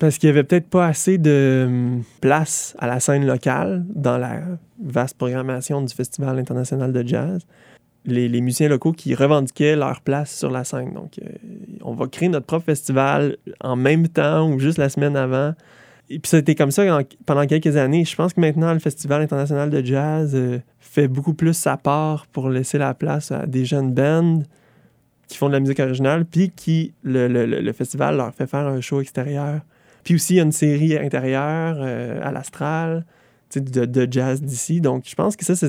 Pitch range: 130-160 Hz